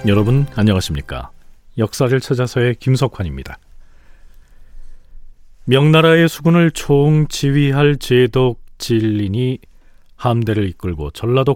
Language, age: Korean, 40-59